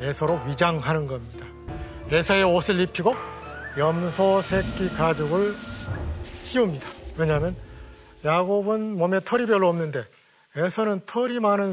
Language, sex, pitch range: Korean, male, 140-195 Hz